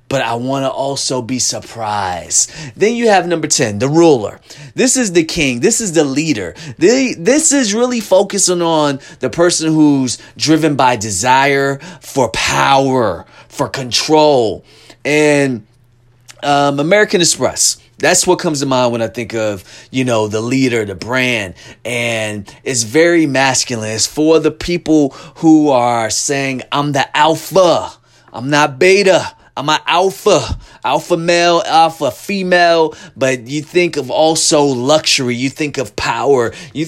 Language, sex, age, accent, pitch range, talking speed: English, male, 30-49, American, 130-170 Hz, 150 wpm